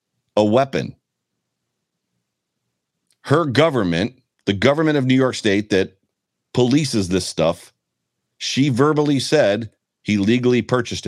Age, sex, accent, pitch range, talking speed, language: 40-59, male, American, 105-130 Hz, 110 wpm, English